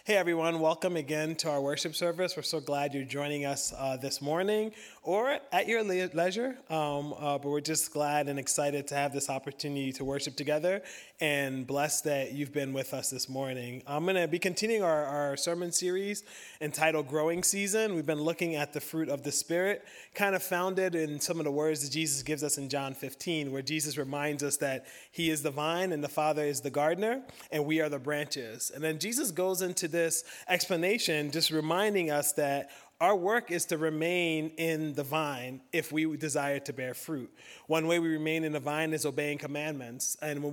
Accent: American